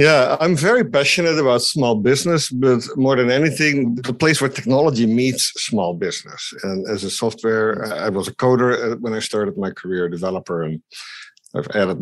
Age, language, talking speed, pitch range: 50-69, English, 175 wpm, 105-140 Hz